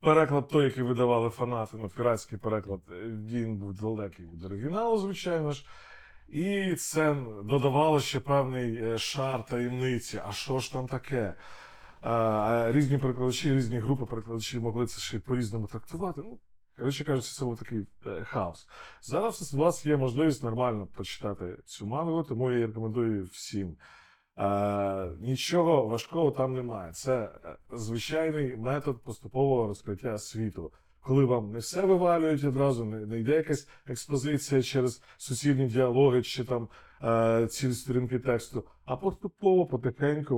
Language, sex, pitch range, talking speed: Ukrainian, male, 110-140 Hz, 130 wpm